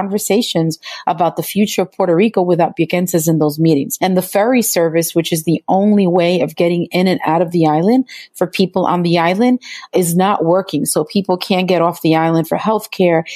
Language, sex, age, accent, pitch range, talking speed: English, female, 30-49, American, 165-205 Hz, 205 wpm